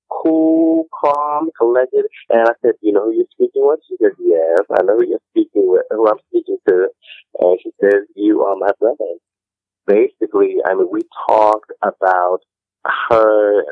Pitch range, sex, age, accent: 340-430 Hz, male, 30-49, American